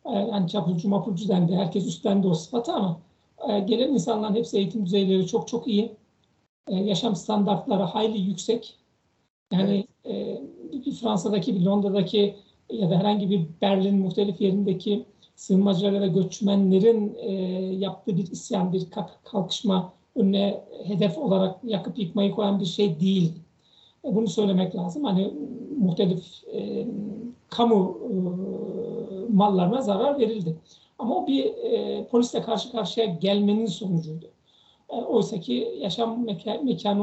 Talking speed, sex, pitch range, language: 120 wpm, male, 190-215 Hz, Turkish